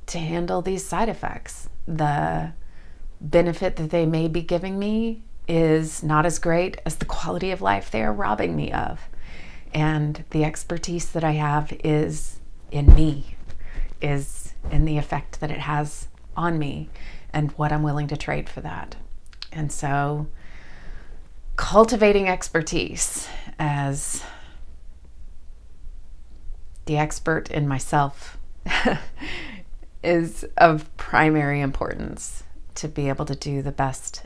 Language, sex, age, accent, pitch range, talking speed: English, female, 30-49, American, 100-165 Hz, 130 wpm